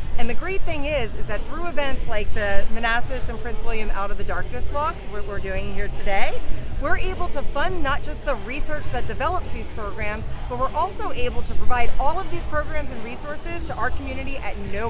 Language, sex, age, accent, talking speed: English, female, 30-49, American, 220 wpm